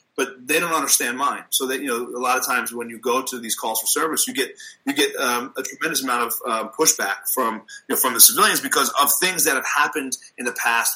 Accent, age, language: American, 30-49, English